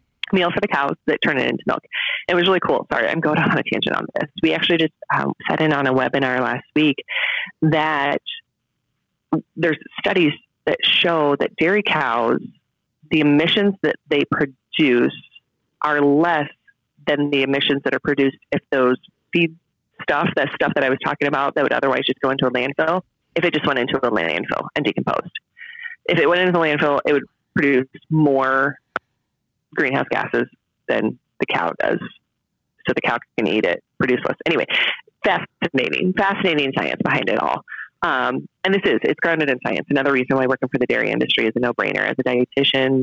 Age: 30-49